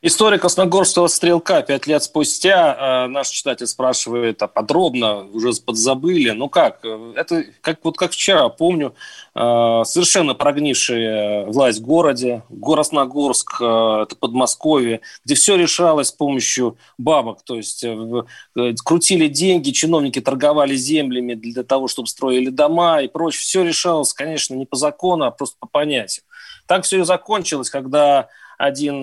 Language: Russian